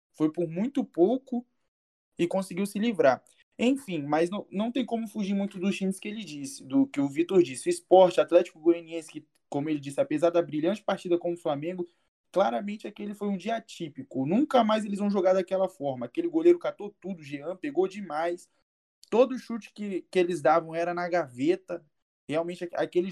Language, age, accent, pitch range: Portuguese, 20-39, Brazilian, 165-225 Hz